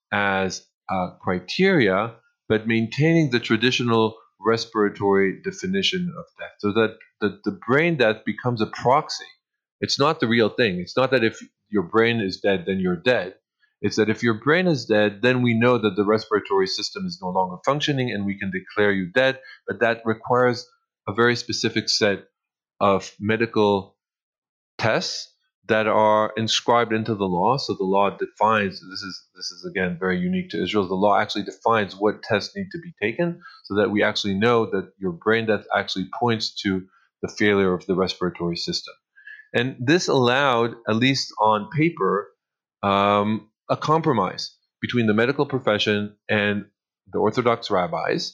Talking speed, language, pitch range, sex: 170 wpm, English, 105-130 Hz, male